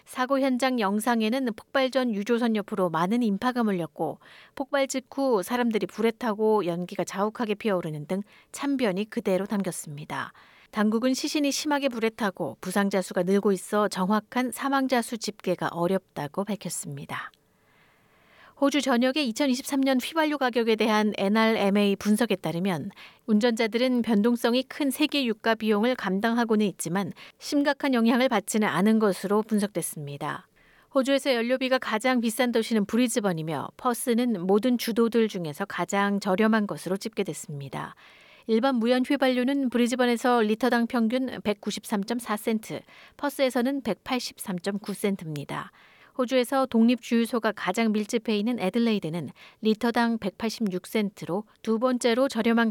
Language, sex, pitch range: Korean, female, 200-250 Hz